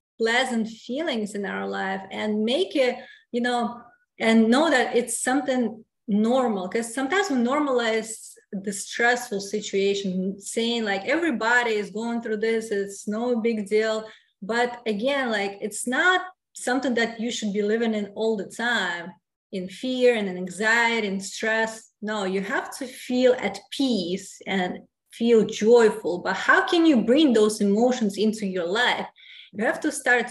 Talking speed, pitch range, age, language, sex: 160 wpm, 205-245 Hz, 20-39, English, female